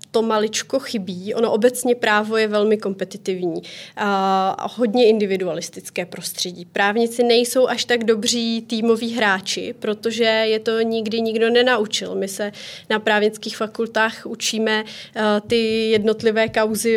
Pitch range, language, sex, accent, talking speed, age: 205-225 Hz, Czech, female, native, 125 wpm, 30-49